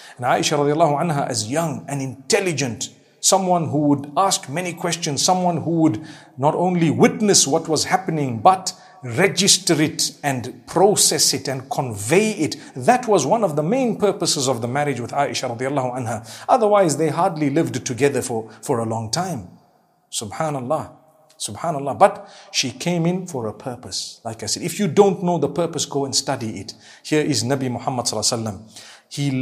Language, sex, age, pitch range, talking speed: English, male, 50-69, 125-175 Hz, 175 wpm